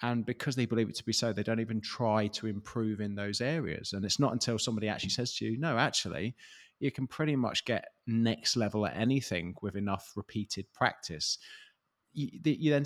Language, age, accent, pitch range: English, 20-39, British, 105-130 Hz